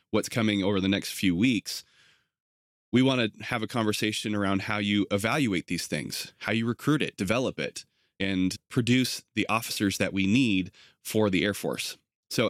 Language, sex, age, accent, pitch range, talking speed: English, male, 20-39, American, 100-120 Hz, 180 wpm